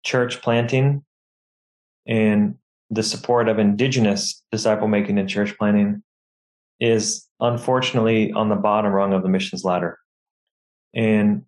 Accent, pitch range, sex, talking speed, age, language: American, 105-115 Hz, male, 120 wpm, 20-39, English